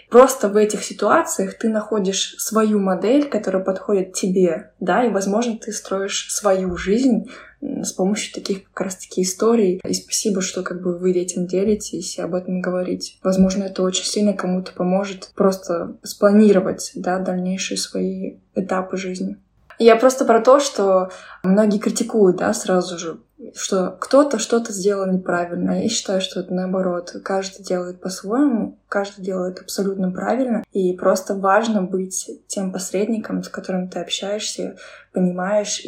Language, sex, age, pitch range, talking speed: Russian, female, 20-39, 185-210 Hz, 145 wpm